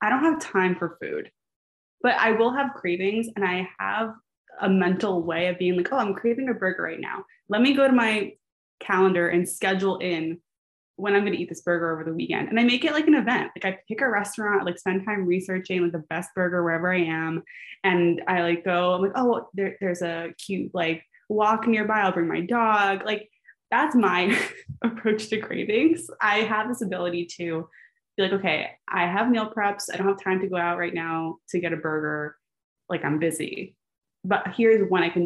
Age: 20-39